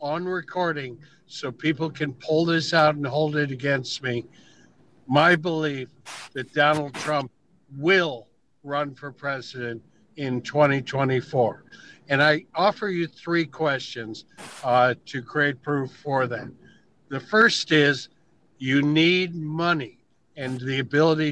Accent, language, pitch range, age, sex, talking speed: American, English, 135-165 Hz, 60-79, male, 125 wpm